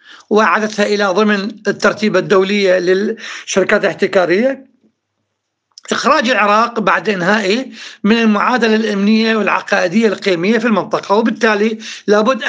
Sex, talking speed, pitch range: male, 95 wpm, 205-240 Hz